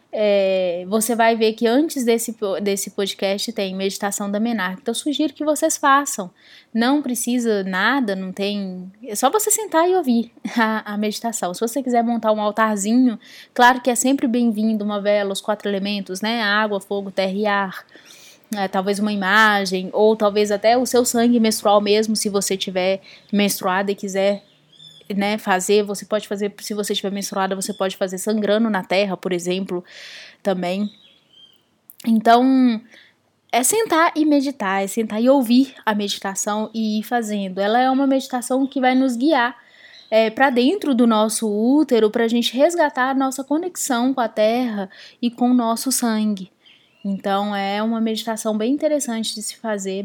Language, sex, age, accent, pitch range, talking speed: Portuguese, female, 10-29, Brazilian, 200-250 Hz, 165 wpm